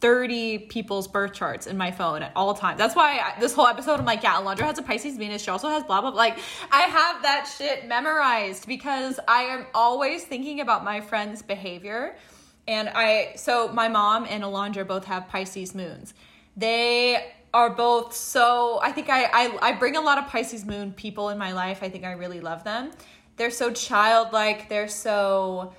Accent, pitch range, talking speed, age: American, 205-265 Hz, 200 wpm, 20-39